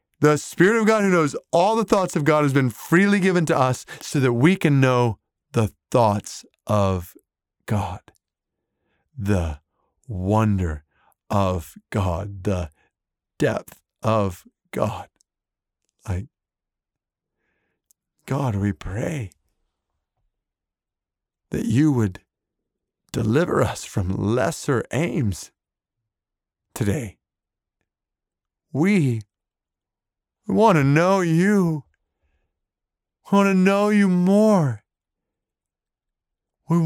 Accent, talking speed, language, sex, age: American, 95 wpm, English, male, 50-69